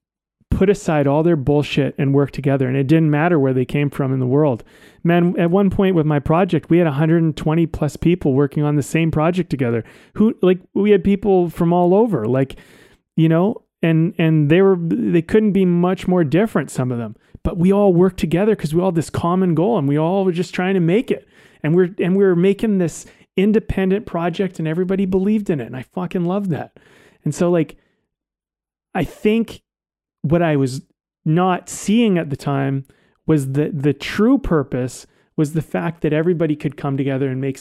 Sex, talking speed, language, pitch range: male, 205 wpm, English, 150-190 Hz